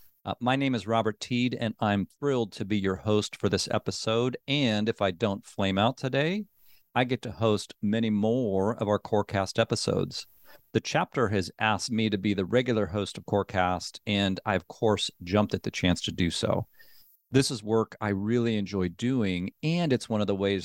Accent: American